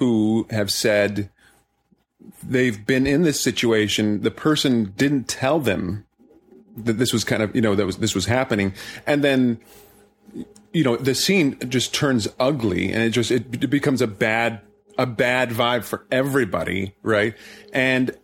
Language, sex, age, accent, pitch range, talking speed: English, male, 30-49, American, 110-135 Hz, 160 wpm